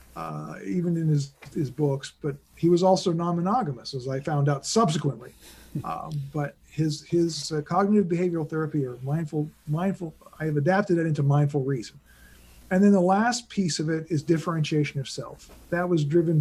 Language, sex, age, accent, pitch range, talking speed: English, male, 50-69, American, 140-175 Hz, 175 wpm